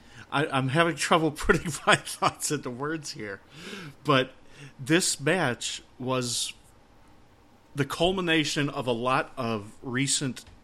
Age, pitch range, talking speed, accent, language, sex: 40-59, 105-135 Hz, 115 wpm, American, English, male